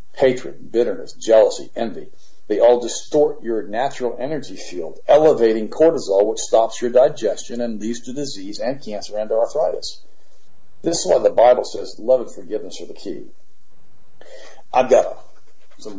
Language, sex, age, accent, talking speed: English, male, 50-69, American, 155 wpm